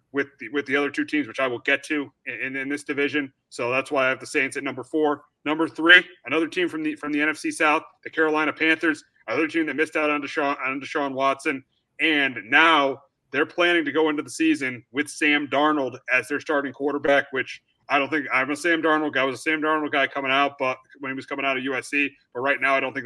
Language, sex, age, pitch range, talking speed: English, male, 30-49, 130-155 Hz, 250 wpm